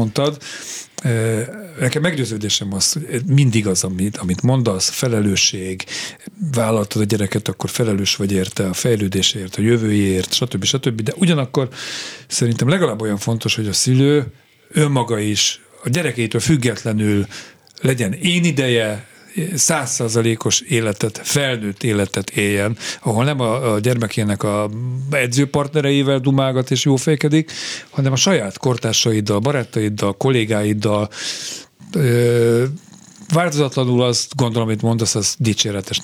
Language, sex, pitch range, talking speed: Hungarian, male, 105-140 Hz, 115 wpm